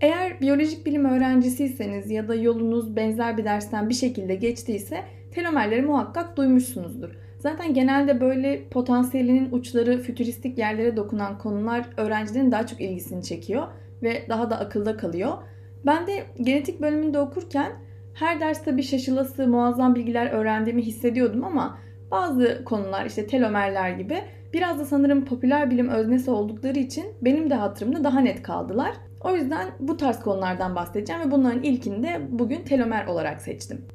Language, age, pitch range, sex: Turkish, 30-49, 210-285 Hz, female